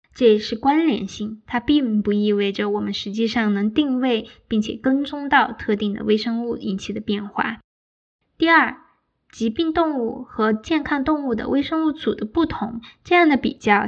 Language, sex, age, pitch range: Chinese, female, 10-29, 210-270 Hz